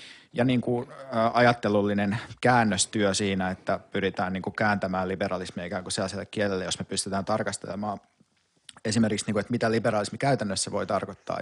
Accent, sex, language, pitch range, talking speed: native, male, Finnish, 100-115 Hz, 150 wpm